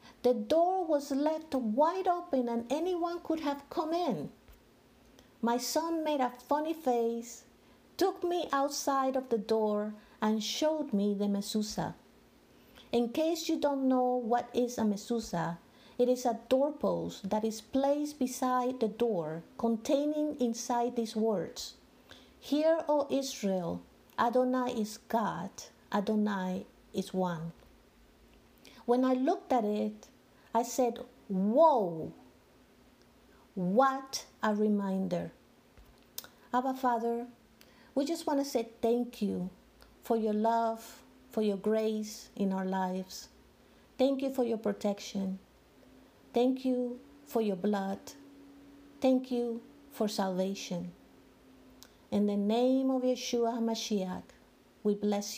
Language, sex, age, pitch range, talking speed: English, female, 50-69, 210-275 Hz, 120 wpm